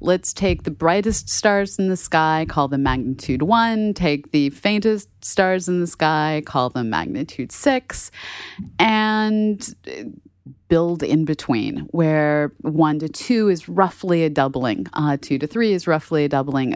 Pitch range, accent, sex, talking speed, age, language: 155-195 Hz, American, female, 155 wpm, 30-49, English